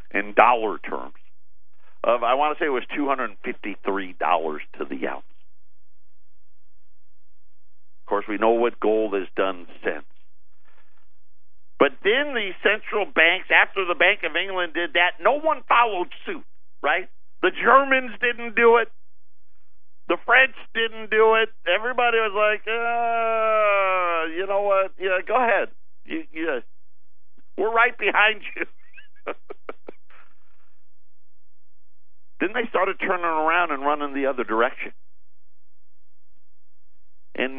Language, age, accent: English, 50-69, American